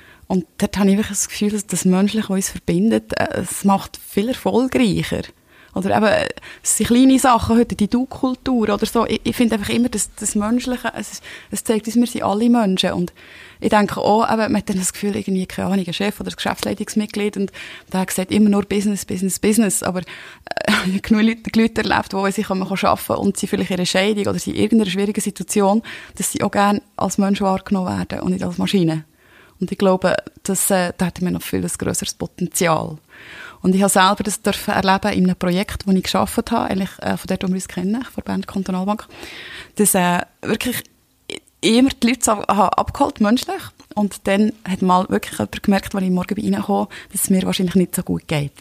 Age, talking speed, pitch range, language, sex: 20-39, 205 wpm, 185-215 Hz, German, female